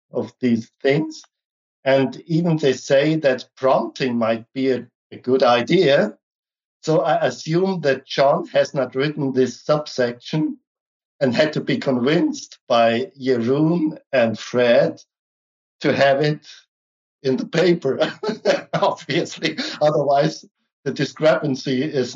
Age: 60-79